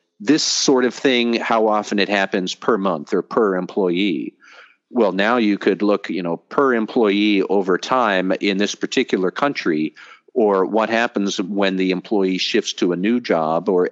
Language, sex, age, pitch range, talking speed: English, male, 50-69, 95-110 Hz, 170 wpm